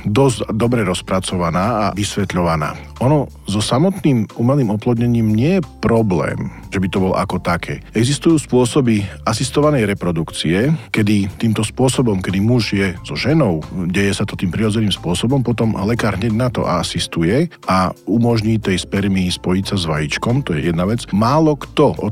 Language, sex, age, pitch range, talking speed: Slovak, male, 40-59, 95-125 Hz, 155 wpm